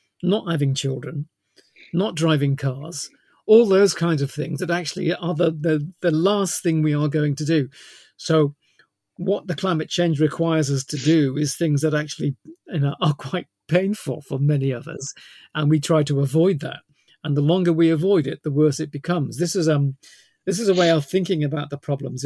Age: 50-69